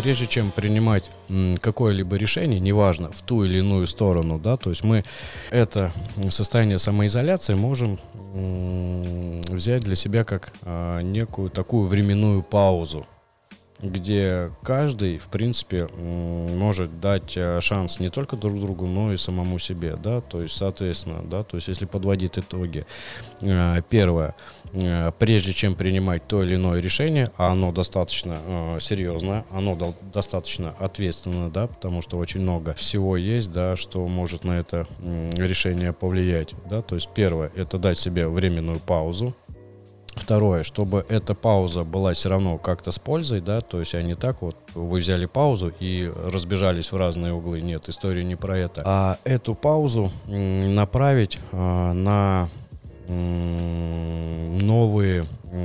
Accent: native